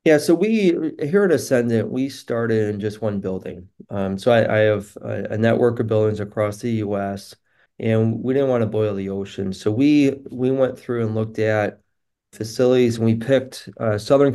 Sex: male